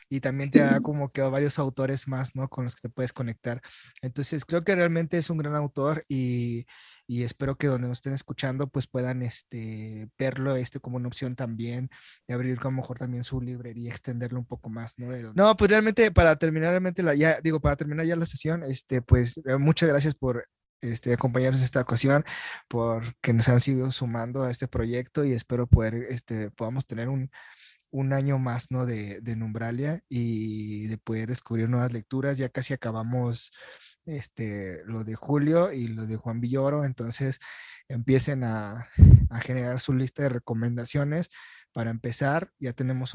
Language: Spanish